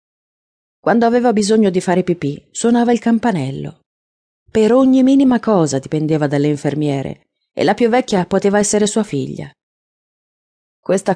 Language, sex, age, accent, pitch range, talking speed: Italian, female, 40-59, native, 155-220 Hz, 135 wpm